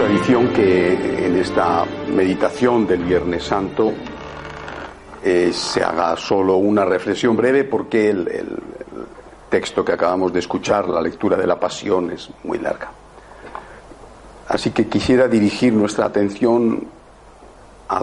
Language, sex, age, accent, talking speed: Spanish, male, 60-79, Spanish, 130 wpm